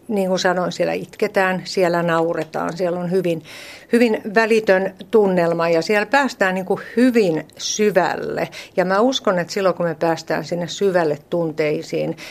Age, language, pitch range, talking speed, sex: 60-79, Finnish, 165-200 Hz, 150 wpm, female